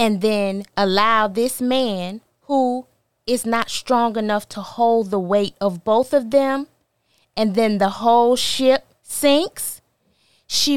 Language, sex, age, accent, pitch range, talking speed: English, female, 20-39, American, 185-275 Hz, 140 wpm